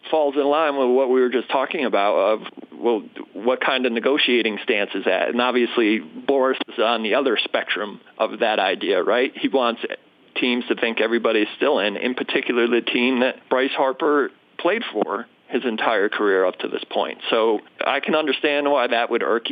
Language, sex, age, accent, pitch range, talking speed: English, male, 40-59, American, 110-130 Hz, 195 wpm